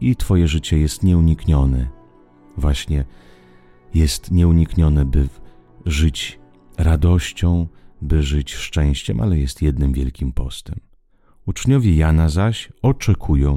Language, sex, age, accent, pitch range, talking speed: Italian, male, 40-59, Polish, 75-90 Hz, 100 wpm